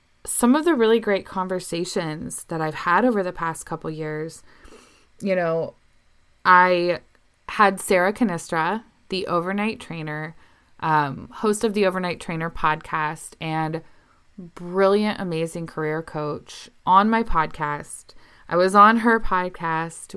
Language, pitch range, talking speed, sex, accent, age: English, 160-205 Hz, 130 wpm, female, American, 20-39